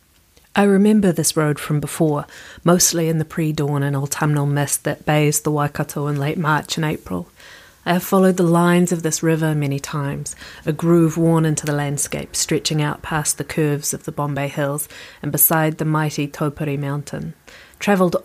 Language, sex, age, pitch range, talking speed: English, female, 30-49, 145-170 Hz, 180 wpm